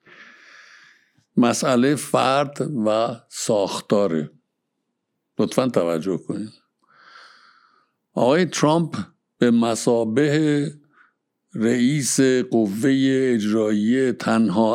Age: 60-79